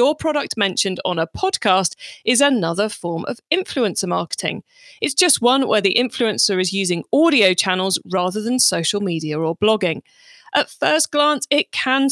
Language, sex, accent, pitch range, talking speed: English, female, British, 185-275 Hz, 165 wpm